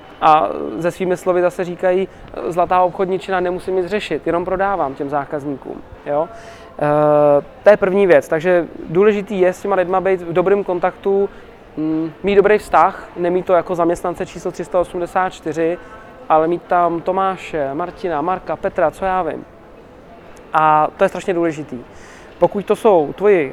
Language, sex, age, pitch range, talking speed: Czech, male, 20-39, 165-190 Hz, 150 wpm